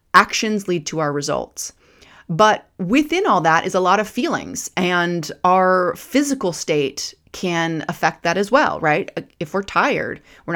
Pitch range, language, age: 160-220 Hz, English, 30-49